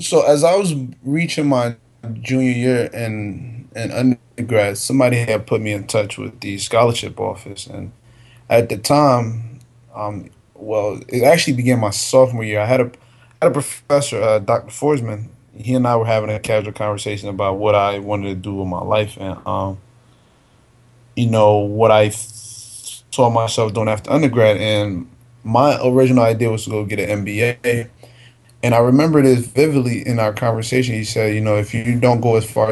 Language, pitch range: English, 110-125 Hz